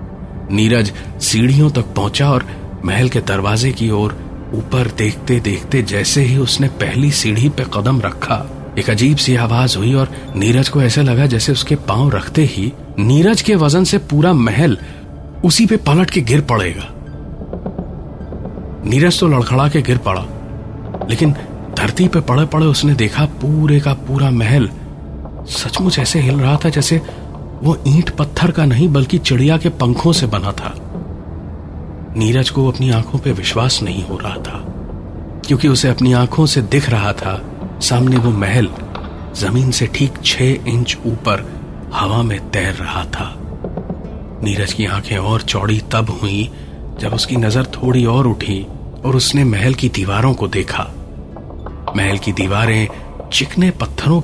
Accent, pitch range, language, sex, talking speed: native, 95-140 Hz, Hindi, male, 150 wpm